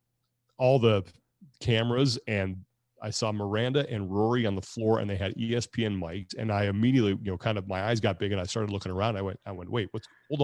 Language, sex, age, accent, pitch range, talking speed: English, male, 30-49, American, 100-120 Hz, 230 wpm